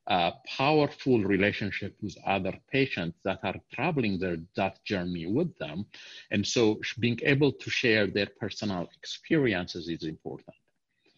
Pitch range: 95-120 Hz